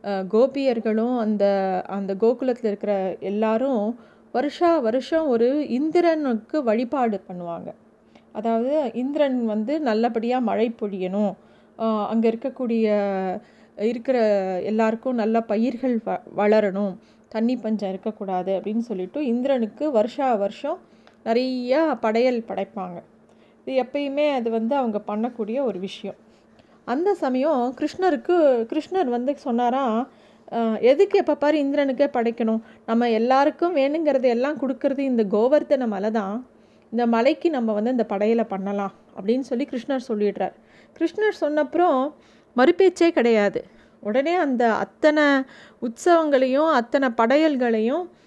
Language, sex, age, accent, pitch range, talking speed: Tamil, female, 30-49, native, 220-280 Hz, 105 wpm